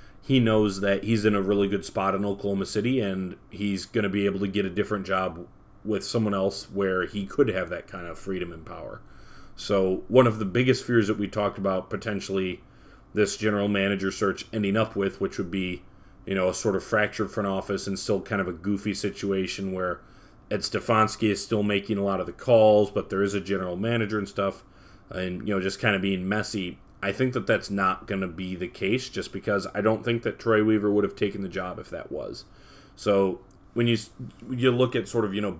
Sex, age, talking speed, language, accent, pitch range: male, 30-49, 230 wpm, English, American, 95-105 Hz